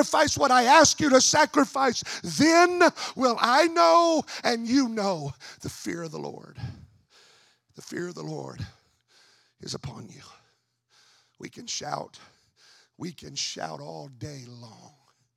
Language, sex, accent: English, male, American